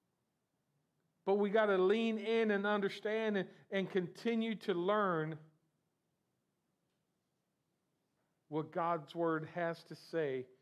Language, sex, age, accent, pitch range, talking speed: English, male, 50-69, American, 145-175 Hz, 105 wpm